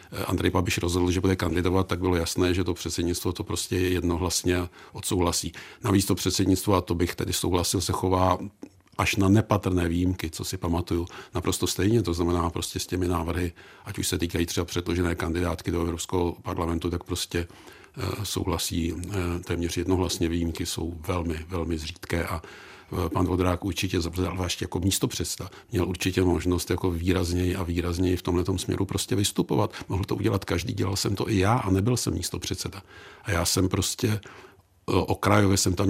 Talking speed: 170 wpm